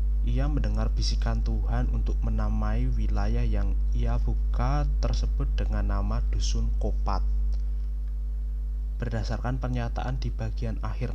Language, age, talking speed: Indonesian, 20-39, 110 wpm